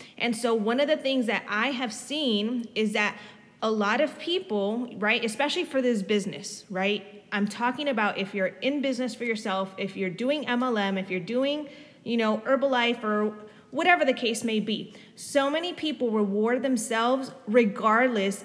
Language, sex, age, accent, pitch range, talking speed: English, female, 20-39, American, 215-260 Hz, 170 wpm